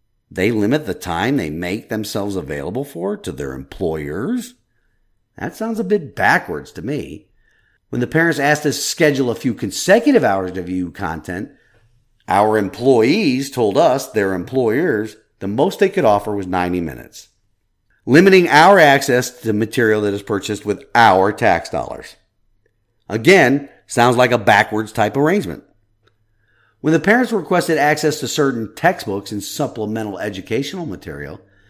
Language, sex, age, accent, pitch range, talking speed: English, male, 40-59, American, 105-160 Hz, 150 wpm